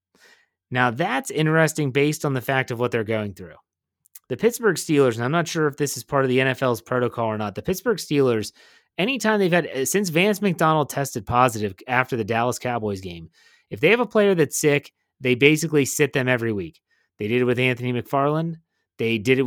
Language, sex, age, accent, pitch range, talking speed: English, male, 30-49, American, 125-155 Hz, 205 wpm